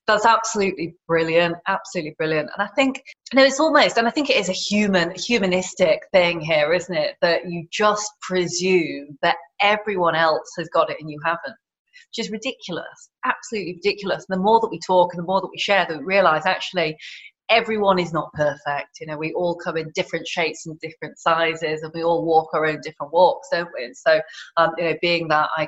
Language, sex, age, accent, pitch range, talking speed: English, female, 20-39, British, 165-215 Hz, 215 wpm